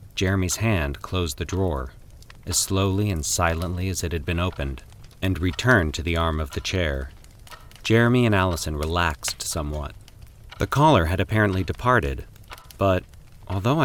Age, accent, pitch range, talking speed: 40-59, American, 85-105 Hz, 145 wpm